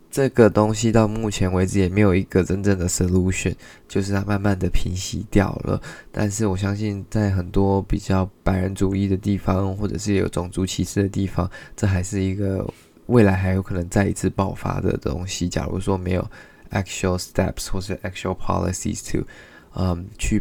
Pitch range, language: 95-110 Hz, Chinese